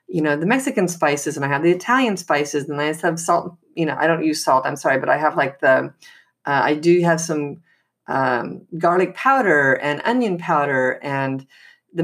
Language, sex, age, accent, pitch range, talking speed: English, female, 40-59, American, 155-210 Hz, 205 wpm